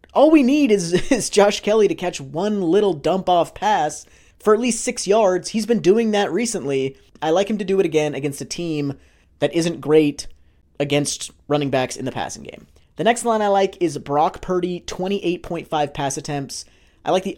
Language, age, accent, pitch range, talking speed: English, 30-49, American, 145-215 Hz, 195 wpm